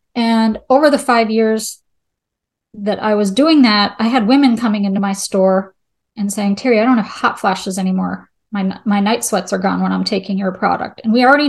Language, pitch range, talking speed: English, 195-225 Hz, 210 wpm